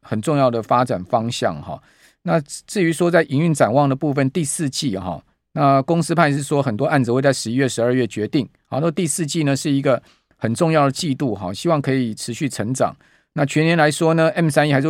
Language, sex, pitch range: Chinese, male, 120-155 Hz